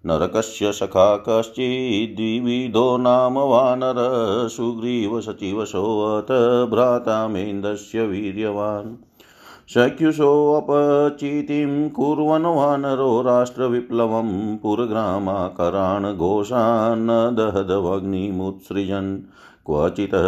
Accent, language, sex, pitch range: native, Hindi, male, 105-125 Hz